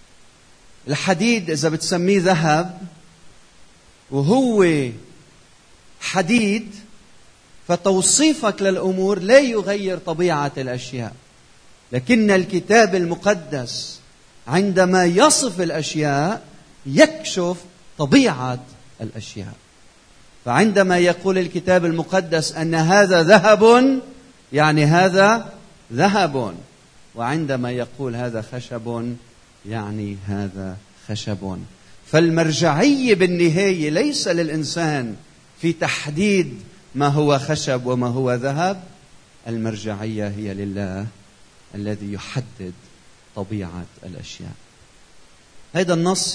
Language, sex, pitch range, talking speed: Arabic, male, 120-185 Hz, 75 wpm